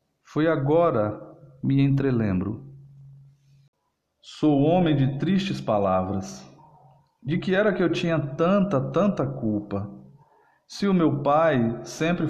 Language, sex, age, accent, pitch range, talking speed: Portuguese, male, 40-59, Brazilian, 130-170 Hz, 110 wpm